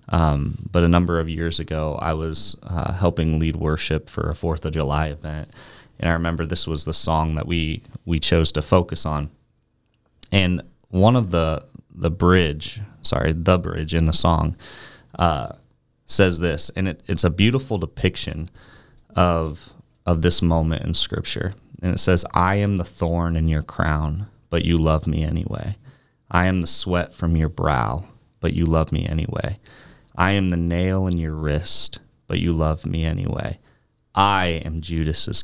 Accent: American